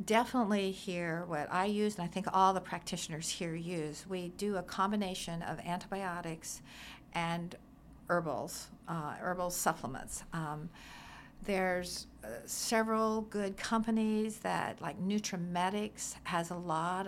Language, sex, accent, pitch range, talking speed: English, female, American, 175-215 Hz, 125 wpm